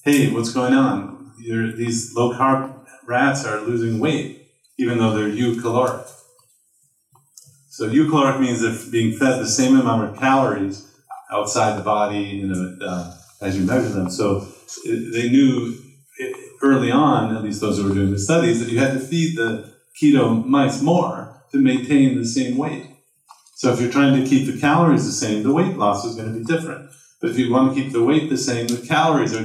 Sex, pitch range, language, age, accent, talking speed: male, 100-135 Hz, English, 40-59, American, 185 wpm